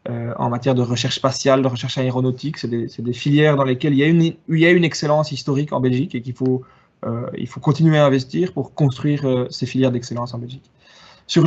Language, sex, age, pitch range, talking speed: French, male, 20-39, 130-155 Hz, 240 wpm